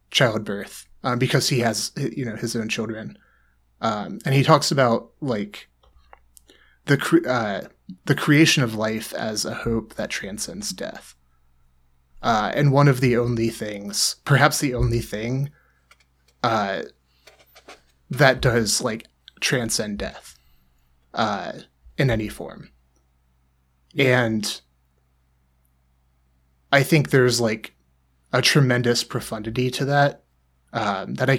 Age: 30-49